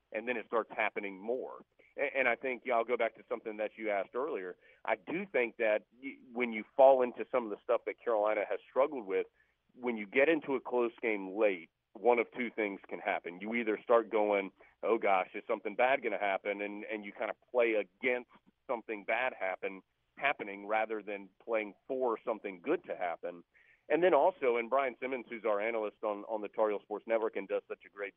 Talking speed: 215 wpm